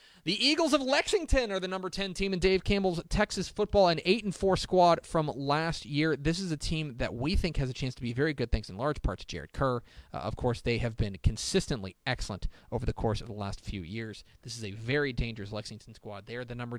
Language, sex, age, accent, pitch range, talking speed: English, male, 30-49, American, 105-150 Hz, 250 wpm